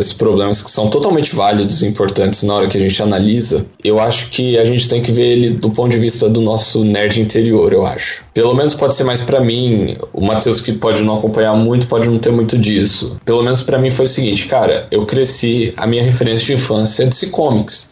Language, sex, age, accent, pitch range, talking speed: Portuguese, male, 10-29, Brazilian, 110-135 Hz, 235 wpm